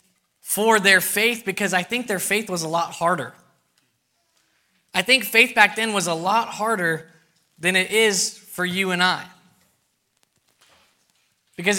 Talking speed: 150 wpm